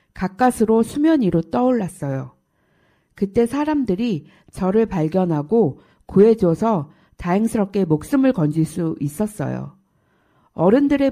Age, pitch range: 50-69, 165-235 Hz